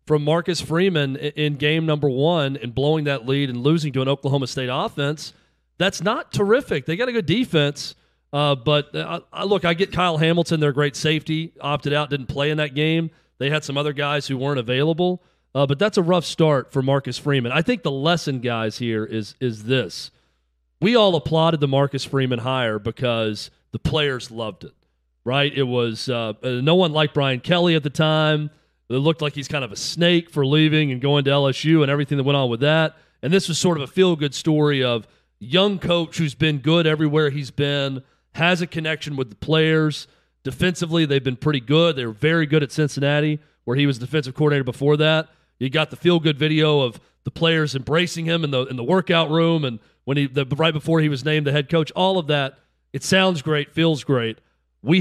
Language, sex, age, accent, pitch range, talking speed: English, male, 40-59, American, 135-160 Hz, 210 wpm